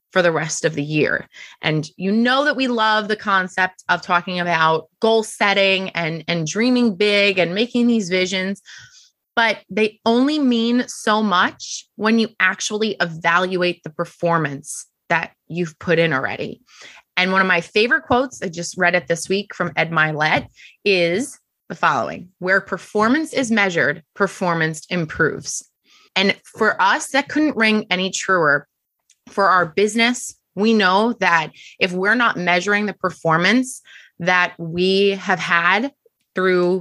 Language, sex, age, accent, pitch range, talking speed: English, female, 20-39, American, 175-220 Hz, 150 wpm